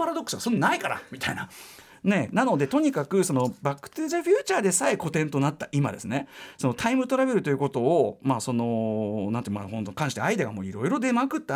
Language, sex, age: Japanese, male, 40-59